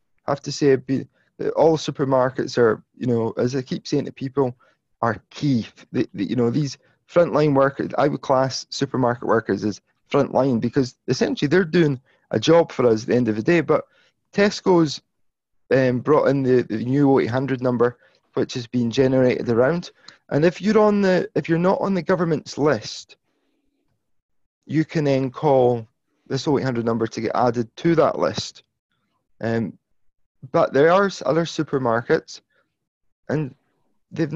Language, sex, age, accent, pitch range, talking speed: English, male, 20-39, British, 125-160 Hz, 165 wpm